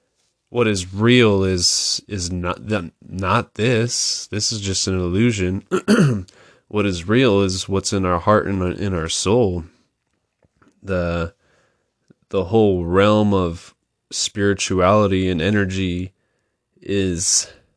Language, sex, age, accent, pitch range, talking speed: English, male, 20-39, American, 90-110 Hz, 120 wpm